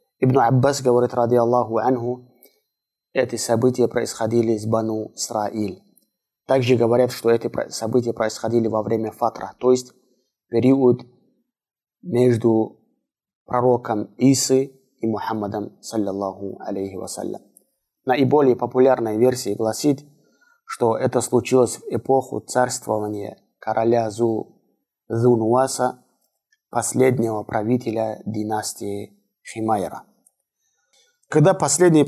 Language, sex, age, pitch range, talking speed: Russian, male, 20-39, 110-130 Hz, 90 wpm